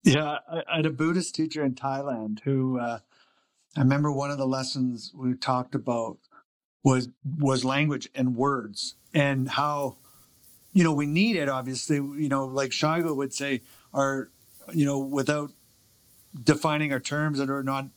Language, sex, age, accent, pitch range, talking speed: English, male, 50-69, American, 130-155 Hz, 160 wpm